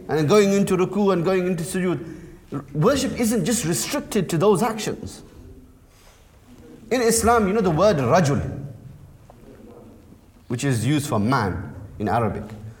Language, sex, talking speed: English, male, 135 wpm